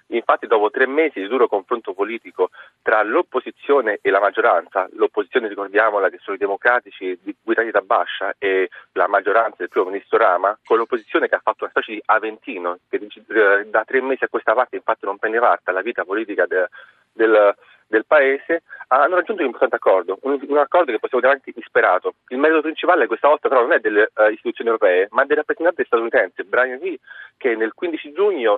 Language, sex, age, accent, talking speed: Italian, male, 40-59, native, 185 wpm